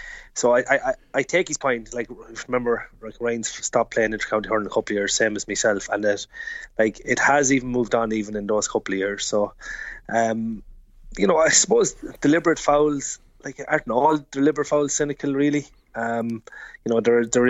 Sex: male